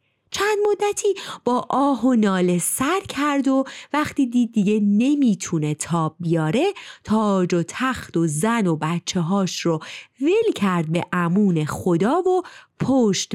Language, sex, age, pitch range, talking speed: Persian, female, 30-49, 175-275 Hz, 140 wpm